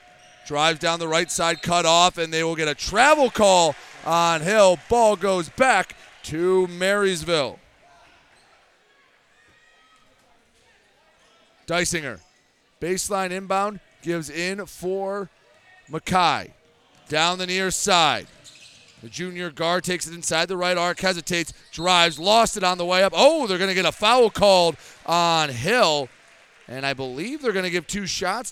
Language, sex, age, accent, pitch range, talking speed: English, male, 30-49, American, 155-195 Hz, 140 wpm